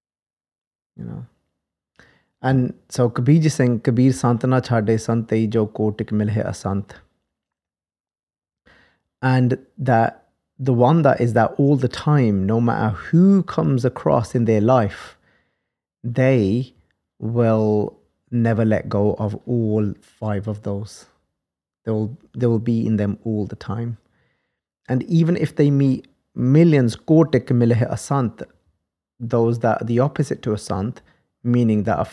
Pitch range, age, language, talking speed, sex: 105-130 Hz, 30-49, English, 135 wpm, male